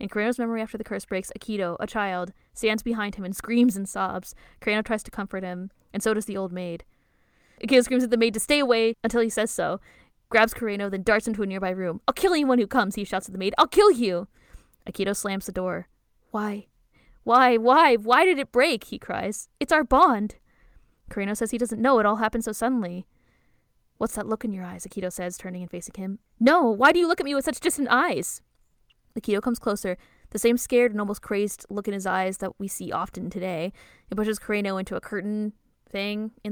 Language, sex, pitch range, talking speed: English, female, 195-240 Hz, 225 wpm